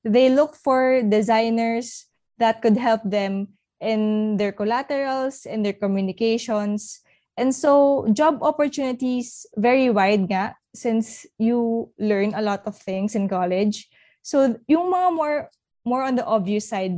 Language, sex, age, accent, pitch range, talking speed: Filipino, female, 20-39, native, 205-250 Hz, 140 wpm